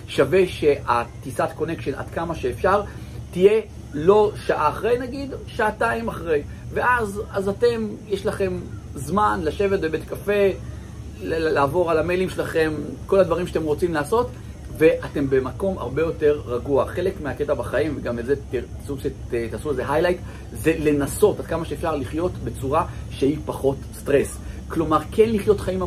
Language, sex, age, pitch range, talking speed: Hebrew, male, 40-59, 135-195 Hz, 140 wpm